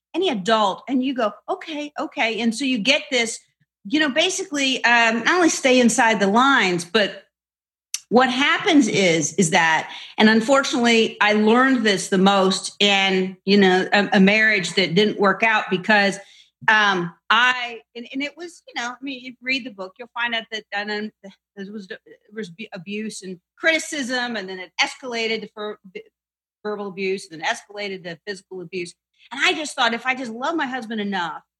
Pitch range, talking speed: 195-260 Hz, 180 wpm